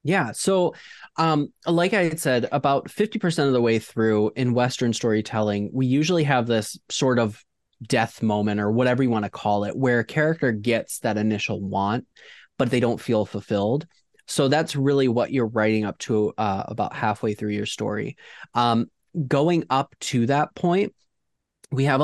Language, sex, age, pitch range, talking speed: English, male, 20-39, 110-135 Hz, 175 wpm